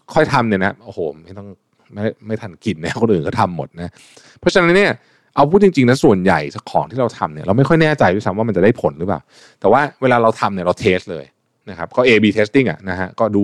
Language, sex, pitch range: Thai, male, 95-120 Hz